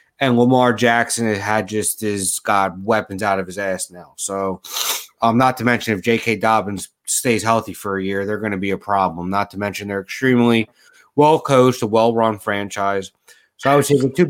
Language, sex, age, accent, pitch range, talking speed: English, male, 30-49, American, 100-130 Hz, 195 wpm